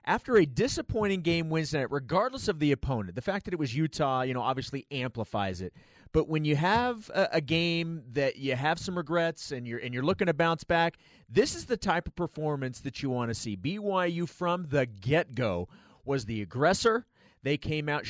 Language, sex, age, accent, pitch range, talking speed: English, male, 30-49, American, 130-170 Hz, 200 wpm